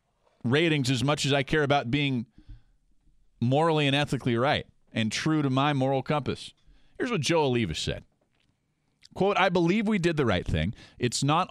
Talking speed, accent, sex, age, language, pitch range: 170 wpm, American, male, 40-59, English, 110-145 Hz